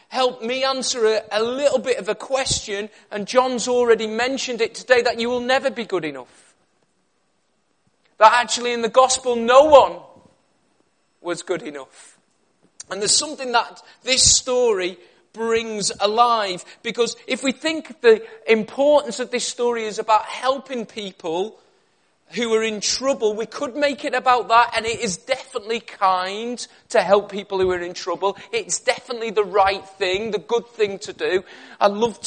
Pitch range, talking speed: 210-245 Hz, 165 wpm